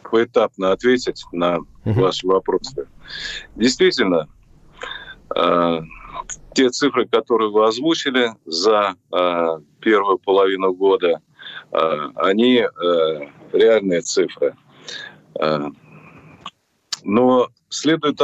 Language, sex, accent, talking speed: Russian, male, native, 80 wpm